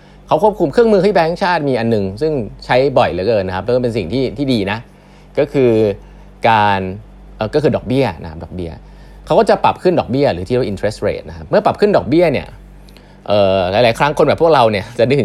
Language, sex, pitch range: Thai, male, 95-135 Hz